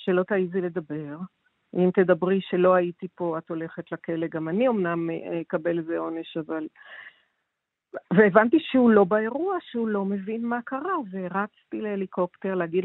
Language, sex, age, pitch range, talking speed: Hebrew, female, 50-69, 165-195 Hz, 140 wpm